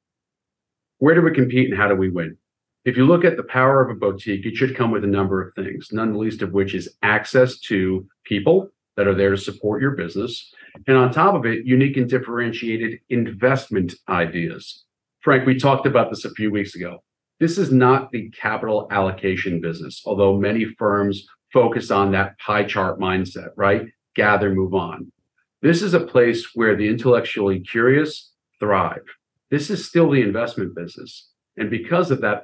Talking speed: 185 wpm